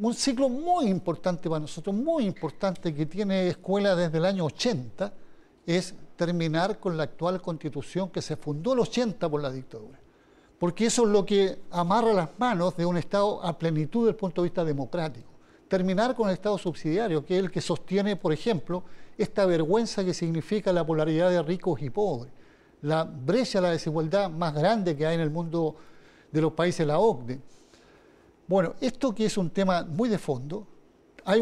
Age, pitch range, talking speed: 50-69, 155-200 Hz, 185 wpm